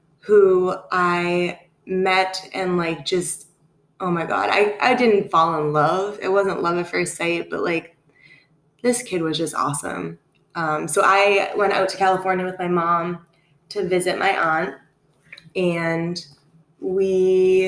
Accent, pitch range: American, 160-190 Hz